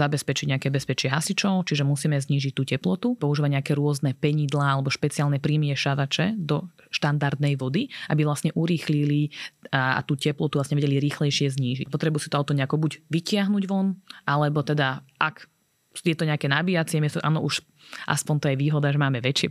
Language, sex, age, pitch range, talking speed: Slovak, female, 20-39, 135-155 Hz, 165 wpm